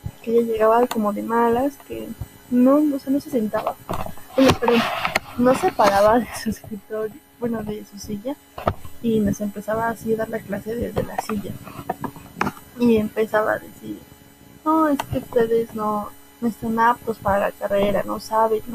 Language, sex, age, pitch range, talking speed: Spanish, female, 20-39, 210-235 Hz, 175 wpm